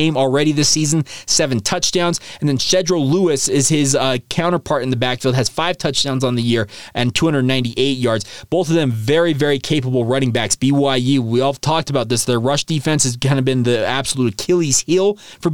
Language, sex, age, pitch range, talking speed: English, male, 20-39, 130-175 Hz, 200 wpm